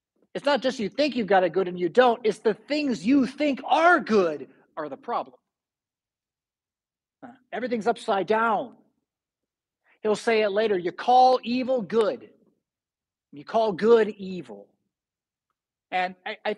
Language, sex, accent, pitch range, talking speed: English, male, American, 185-255 Hz, 145 wpm